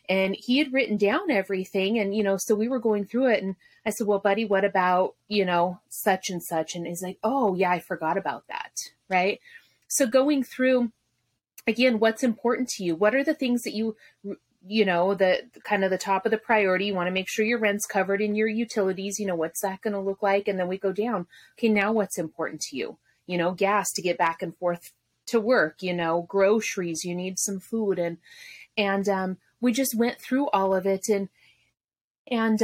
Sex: female